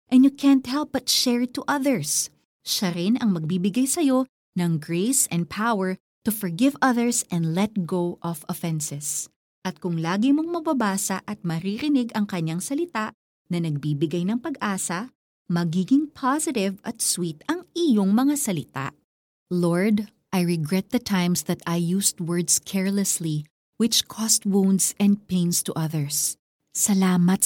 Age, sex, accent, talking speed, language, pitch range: 30-49, female, native, 140 wpm, Filipino, 175-240 Hz